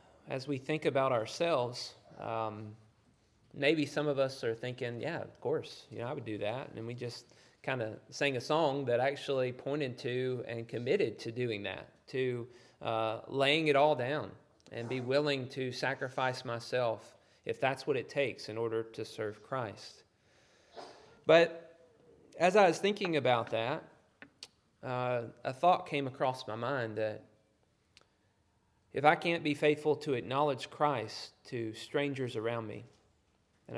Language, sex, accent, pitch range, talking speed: English, male, American, 115-140 Hz, 155 wpm